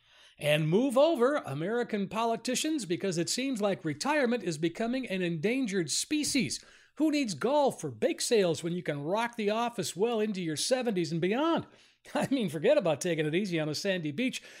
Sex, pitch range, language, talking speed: male, 175-255 Hz, English, 180 wpm